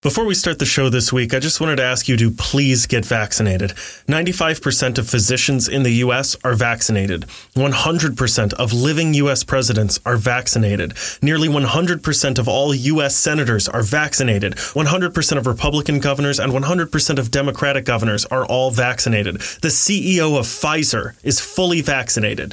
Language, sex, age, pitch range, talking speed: English, male, 30-49, 115-145 Hz, 155 wpm